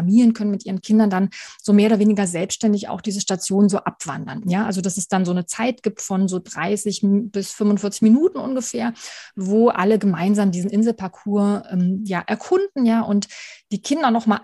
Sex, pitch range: female, 185-220 Hz